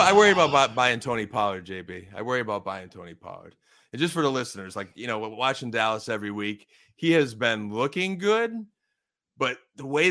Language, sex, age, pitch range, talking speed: English, male, 30-49, 105-150 Hz, 195 wpm